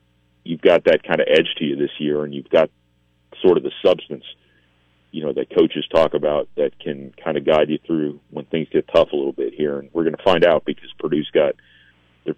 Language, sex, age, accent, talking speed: English, male, 40-59, American, 235 wpm